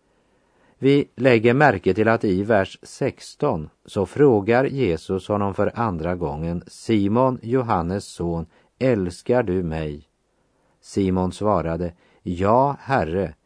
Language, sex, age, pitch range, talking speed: Slovak, male, 50-69, 85-115 Hz, 110 wpm